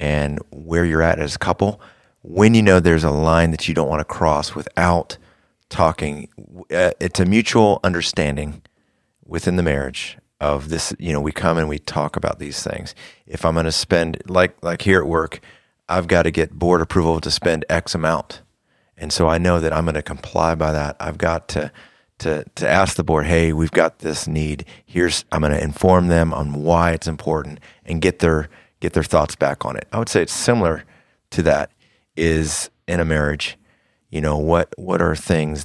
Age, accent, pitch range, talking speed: 30-49, American, 75-90 Hz, 200 wpm